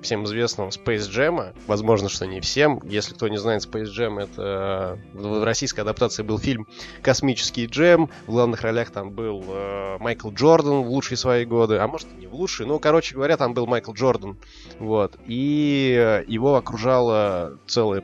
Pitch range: 100-125 Hz